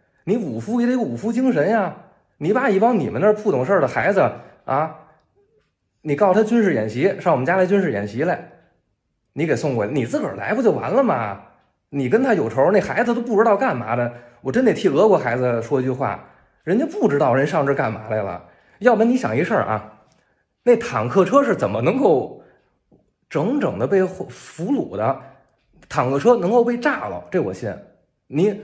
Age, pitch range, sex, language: 20-39, 125-210 Hz, male, Chinese